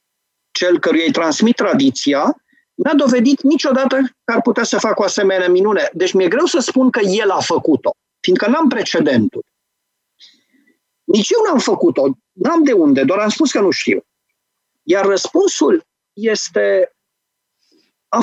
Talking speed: 150 wpm